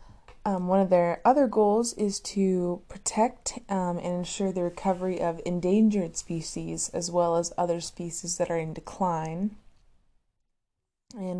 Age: 20-39